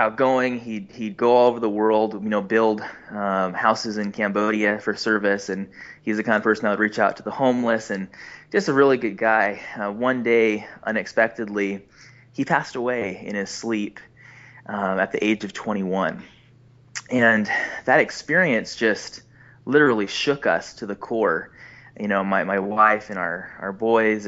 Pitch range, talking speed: 105-125 Hz, 175 wpm